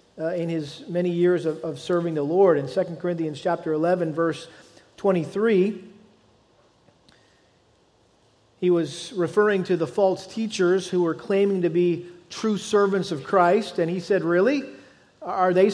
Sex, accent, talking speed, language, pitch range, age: male, American, 155 wpm, English, 175-210 Hz, 40-59